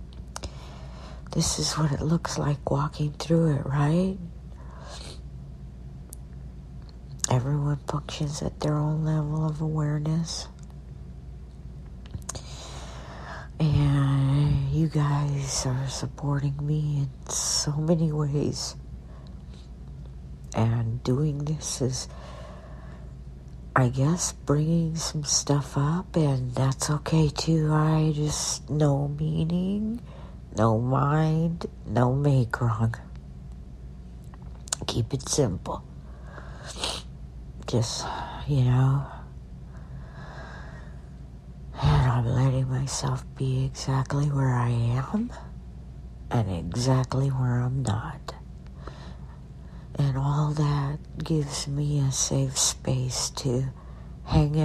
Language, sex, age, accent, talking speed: English, female, 60-79, American, 90 wpm